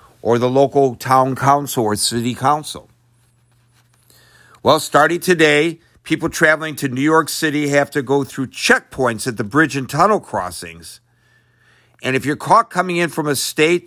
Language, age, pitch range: English, 50-69, 120-150 Hz